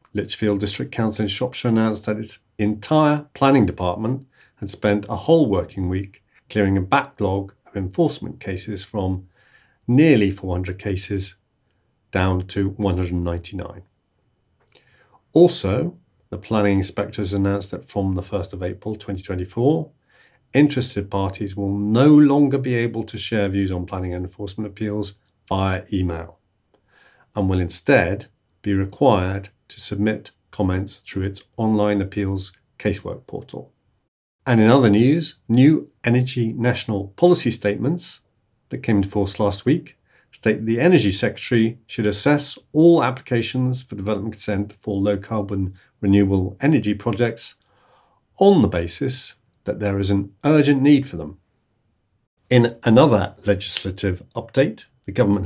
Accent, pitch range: British, 100-120 Hz